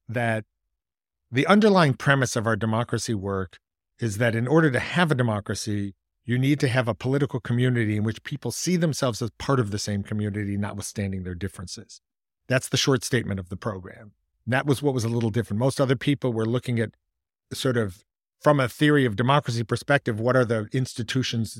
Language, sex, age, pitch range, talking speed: English, male, 50-69, 110-130 Hz, 190 wpm